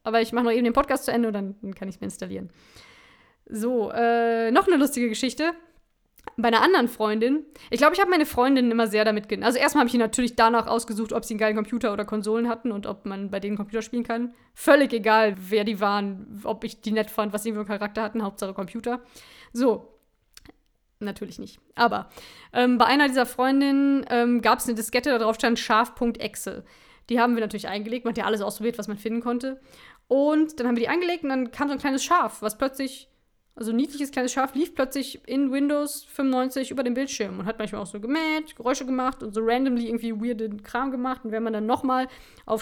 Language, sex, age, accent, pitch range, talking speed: German, female, 20-39, German, 220-265 Hz, 225 wpm